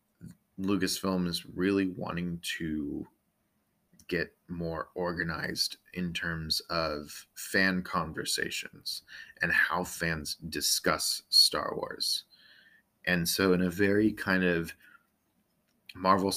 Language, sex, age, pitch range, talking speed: English, male, 30-49, 85-95 Hz, 100 wpm